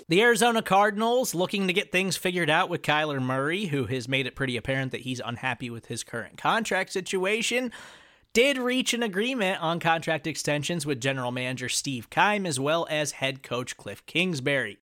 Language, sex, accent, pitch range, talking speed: English, male, American, 125-170 Hz, 180 wpm